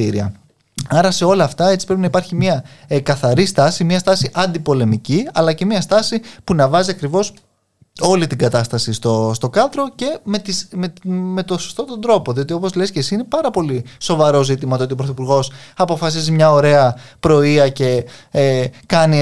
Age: 20-39